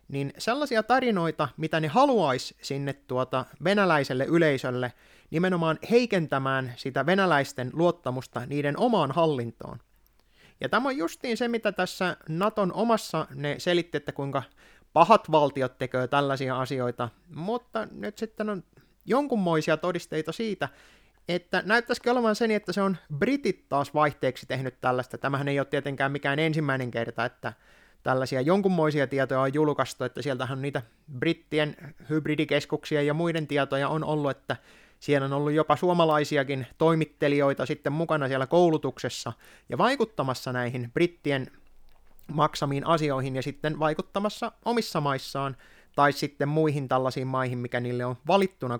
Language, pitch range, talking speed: Finnish, 135-175 Hz, 135 wpm